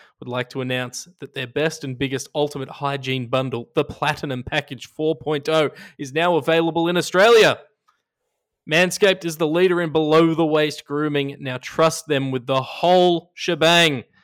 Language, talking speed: English, 150 wpm